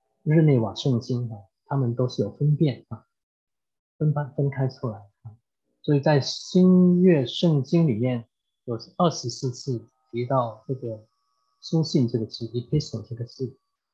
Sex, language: male, English